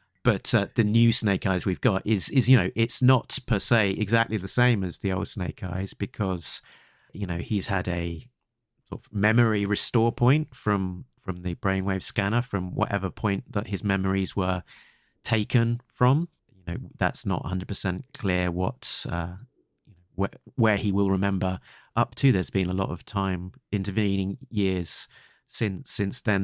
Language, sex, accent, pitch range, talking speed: English, male, British, 95-115 Hz, 170 wpm